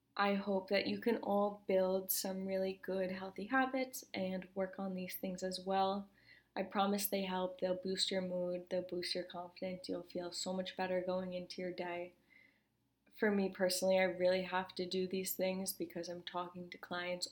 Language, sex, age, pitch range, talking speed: English, female, 20-39, 185-200 Hz, 190 wpm